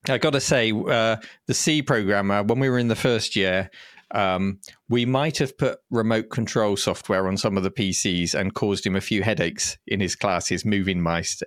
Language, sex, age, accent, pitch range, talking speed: English, male, 40-59, British, 100-130 Hz, 205 wpm